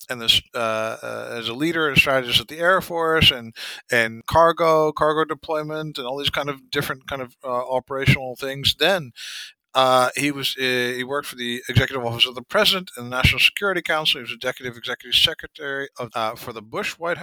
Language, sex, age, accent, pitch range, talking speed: English, male, 50-69, American, 120-150 Hz, 215 wpm